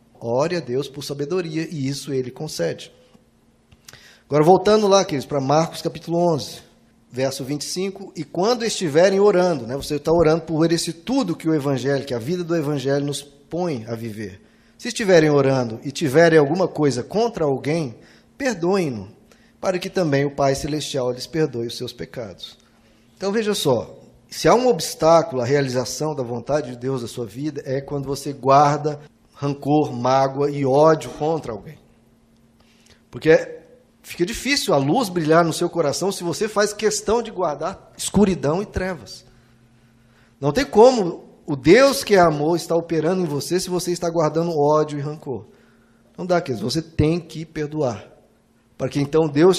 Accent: Brazilian